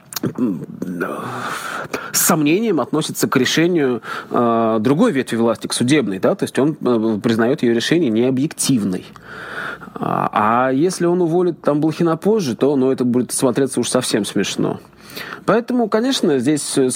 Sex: male